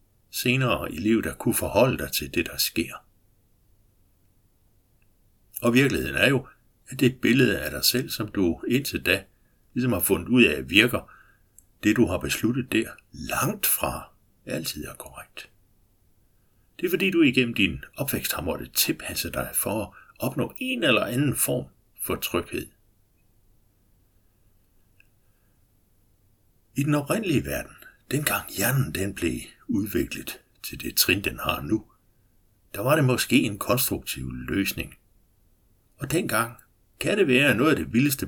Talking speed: 145 wpm